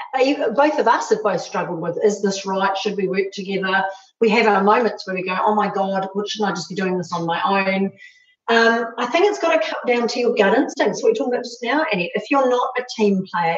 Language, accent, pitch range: English, Australian, 195-260 Hz